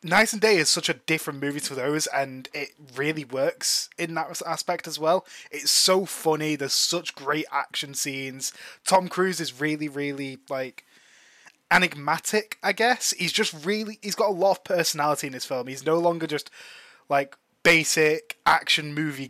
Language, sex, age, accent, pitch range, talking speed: English, male, 20-39, British, 135-170 Hz, 175 wpm